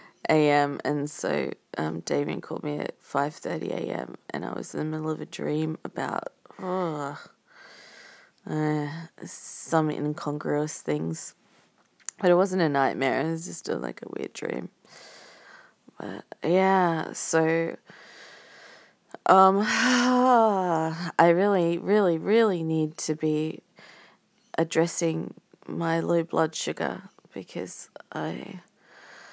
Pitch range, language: 160-190 Hz, English